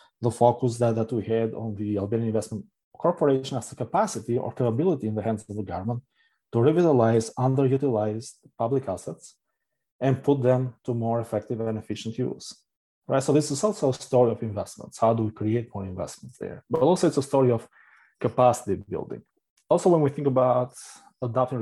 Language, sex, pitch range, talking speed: English, male, 115-140 Hz, 185 wpm